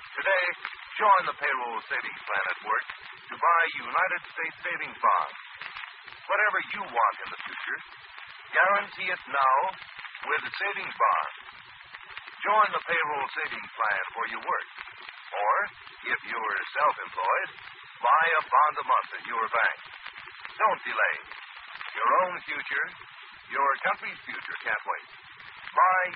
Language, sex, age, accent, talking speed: English, male, 60-79, American, 130 wpm